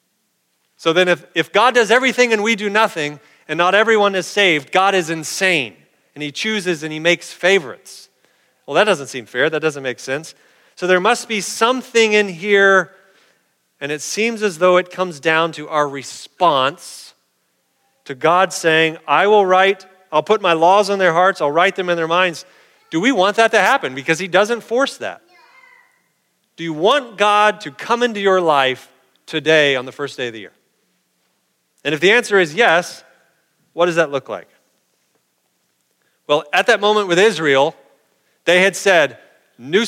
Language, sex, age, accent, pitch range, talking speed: English, male, 40-59, American, 150-205 Hz, 180 wpm